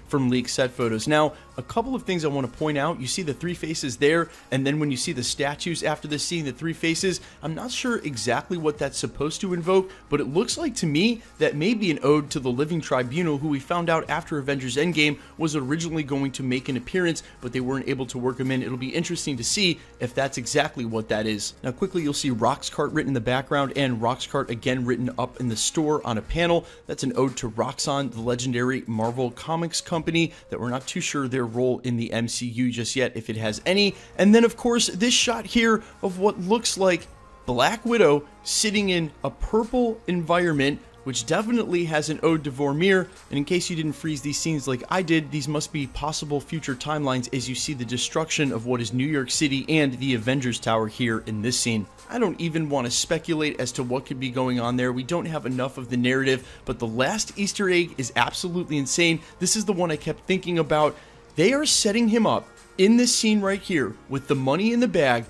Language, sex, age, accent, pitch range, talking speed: English, male, 30-49, American, 130-175 Hz, 230 wpm